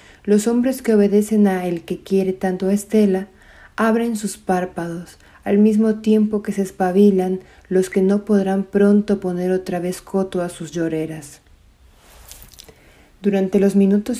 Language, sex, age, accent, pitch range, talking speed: Spanish, female, 40-59, Mexican, 175-200 Hz, 150 wpm